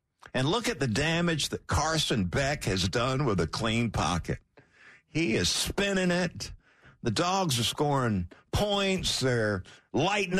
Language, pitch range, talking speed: English, 105-160 Hz, 145 wpm